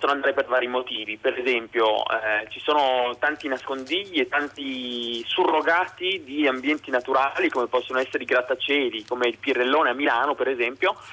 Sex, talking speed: male, 155 wpm